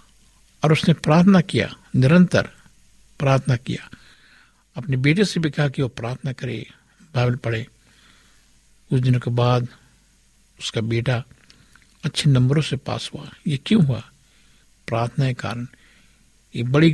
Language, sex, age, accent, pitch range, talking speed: Hindi, male, 60-79, native, 125-145 Hz, 130 wpm